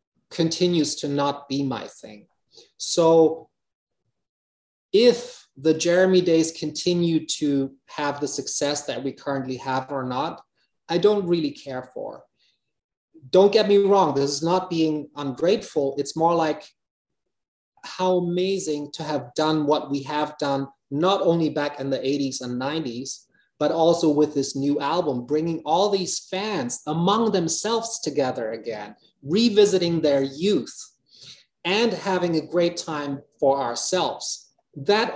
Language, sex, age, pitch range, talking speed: English, male, 30-49, 140-180 Hz, 140 wpm